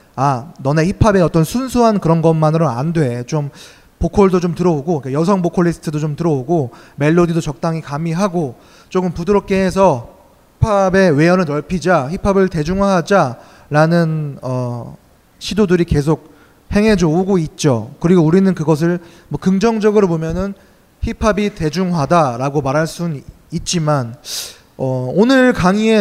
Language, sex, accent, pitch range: Korean, male, native, 150-195 Hz